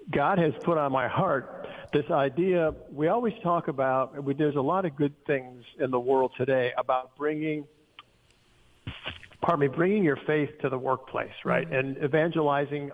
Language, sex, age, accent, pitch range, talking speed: English, male, 50-69, American, 135-160 Hz, 165 wpm